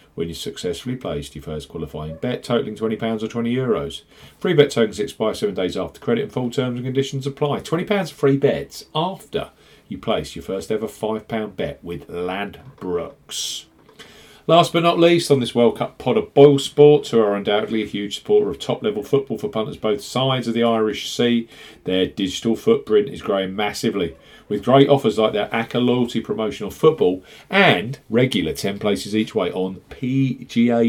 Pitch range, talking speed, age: 110-140 Hz, 175 wpm, 40-59